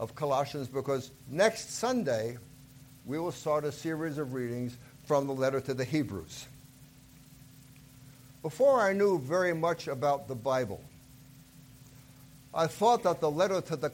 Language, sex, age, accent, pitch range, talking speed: English, male, 60-79, American, 135-160 Hz, 140 wpm